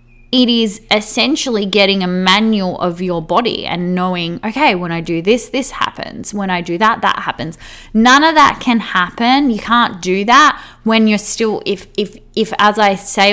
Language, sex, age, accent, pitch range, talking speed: English, female, 10-29, Australian, 170-215 Hz, 190 wpm